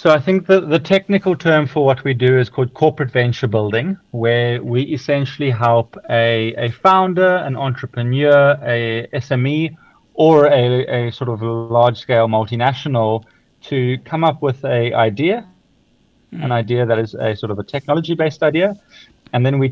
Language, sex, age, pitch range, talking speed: English, male, 30-49, 115-145 Hz, 165 wpm